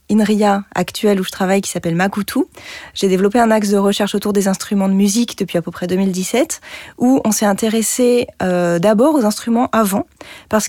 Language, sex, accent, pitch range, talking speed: French, female, French, 185-225 Hz, 190 wpm